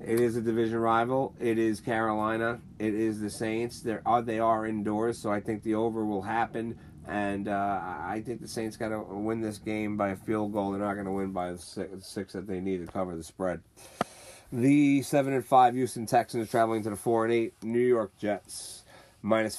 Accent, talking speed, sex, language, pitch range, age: American, 220 wpm, male, English, 100-120 Hz, 30-49